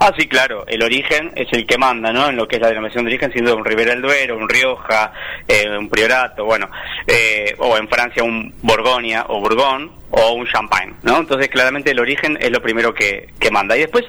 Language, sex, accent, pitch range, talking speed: Spanish, male, Argentinian, 120-160 Hz, 225 wpm